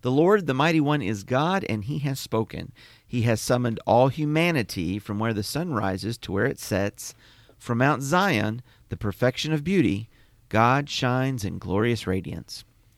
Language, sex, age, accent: English, male, 40-59, American